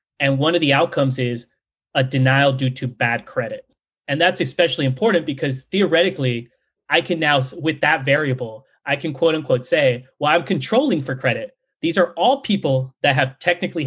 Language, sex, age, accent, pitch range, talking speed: English, male, 30-49, American, 130-160 Hz, 175 wpm